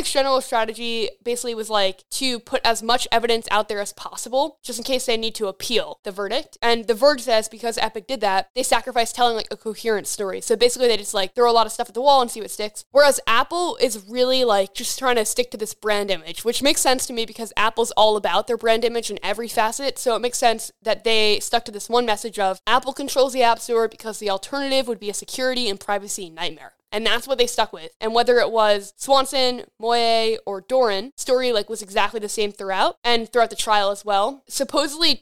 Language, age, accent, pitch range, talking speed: English, 10-29, American, 210-245 Hz, 235 wpm